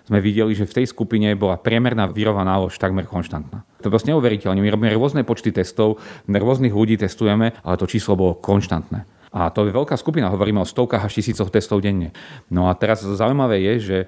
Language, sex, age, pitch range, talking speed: Slovak, male, 40-59, 95-110 Hz, 205 wpm